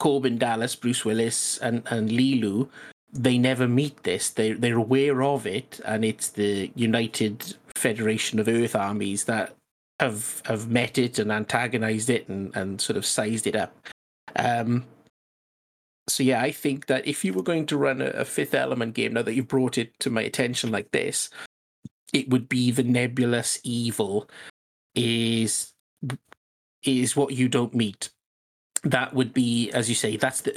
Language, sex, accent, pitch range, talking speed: English, male, British, 110-130 Hz, 170 wpm